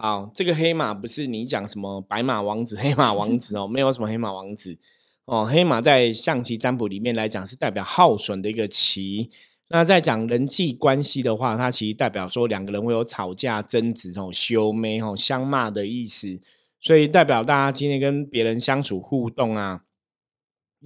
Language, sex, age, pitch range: Chinese, male, 20-39, 105-135 Hz